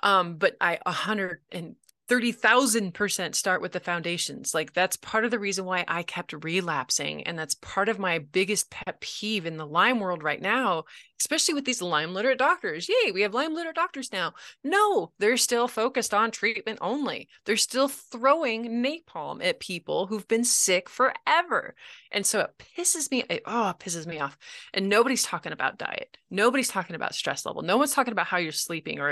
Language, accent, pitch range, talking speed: English, American, 170-240 Hz, 195 wpm